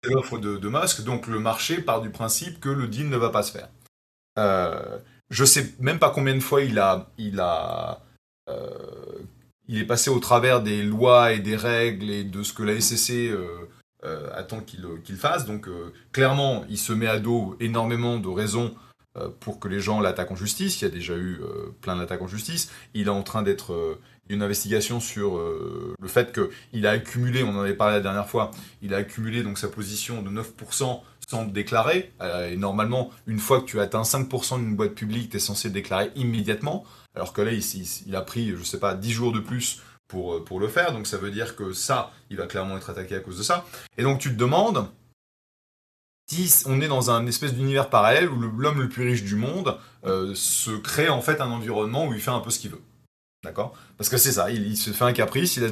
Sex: male